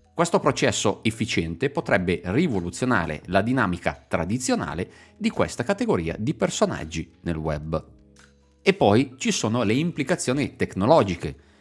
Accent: native